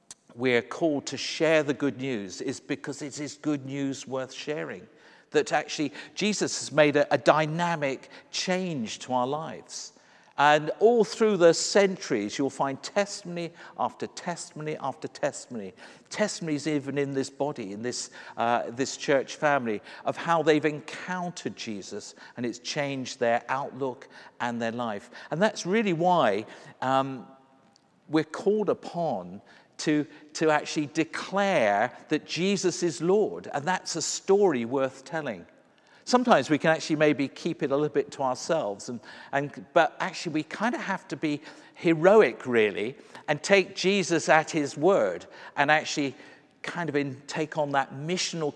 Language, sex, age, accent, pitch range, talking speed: English, male, 50-69, British, 140-180 Hz, 150 wpm